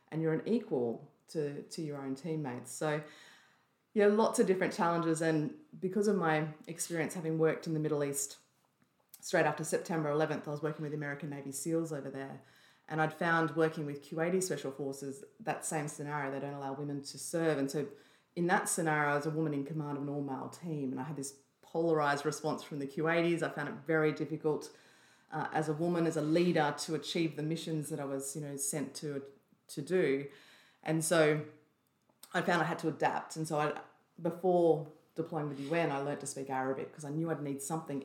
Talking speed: 210 wpm